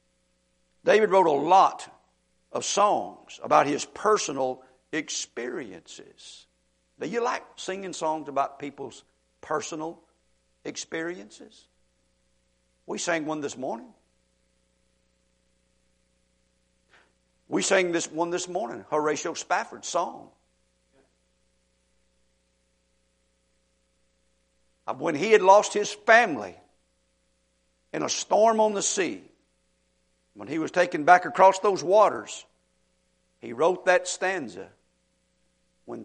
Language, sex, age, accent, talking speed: English, male, 60-79, American, 95 wpm